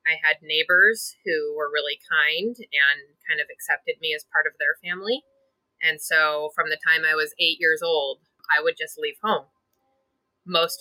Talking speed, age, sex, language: 185 wpm, 20-39, female, English